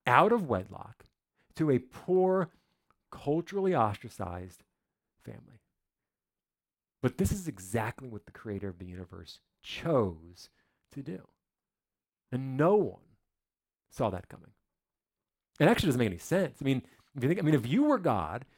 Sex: male